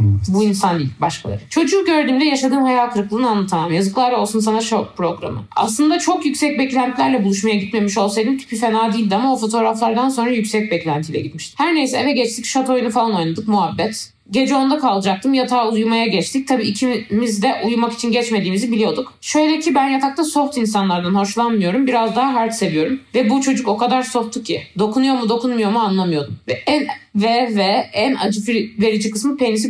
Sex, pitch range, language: female, 200-260 Hz, Turkish